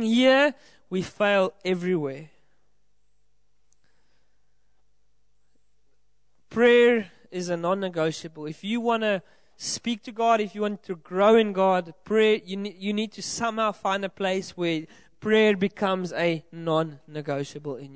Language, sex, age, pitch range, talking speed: English, male, 20-39, 150-195 Hz, 125 wpm